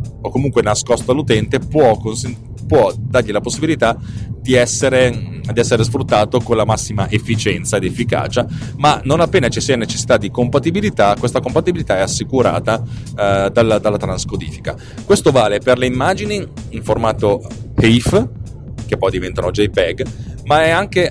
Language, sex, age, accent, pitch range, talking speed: Italian, male, 30-49, native, 105-125 Hz, 145 wpm